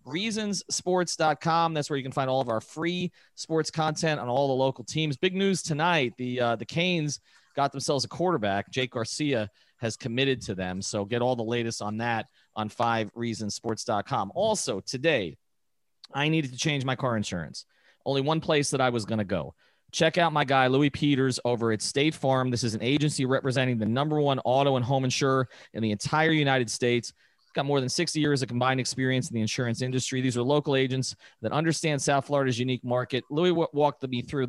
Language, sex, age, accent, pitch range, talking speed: English, male, 30-49, American, 120-145 Hz, 195 wpm